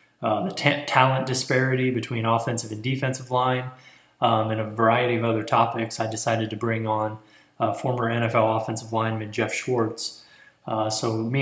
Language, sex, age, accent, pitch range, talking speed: English, male, 20-39, American, 110-125 Hz, 170 wpm